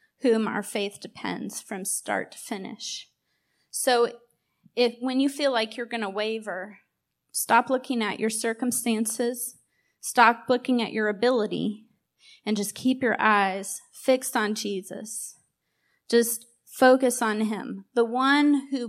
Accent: American